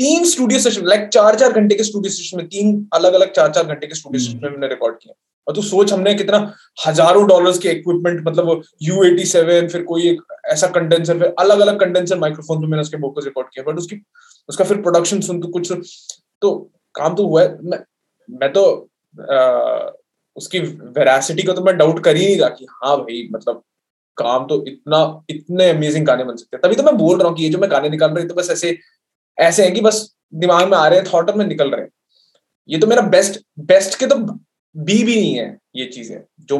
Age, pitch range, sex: 20-39, 150-205 Hz, male